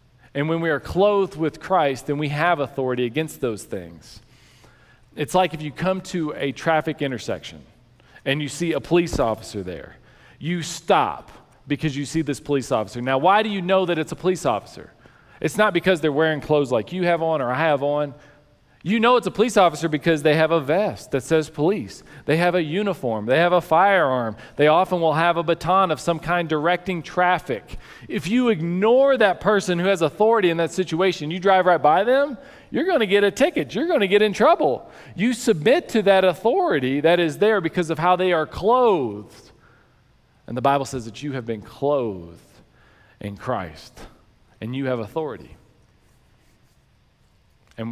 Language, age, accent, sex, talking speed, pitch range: English, 40-59, American, male, 190 wpm, 125-175 Hz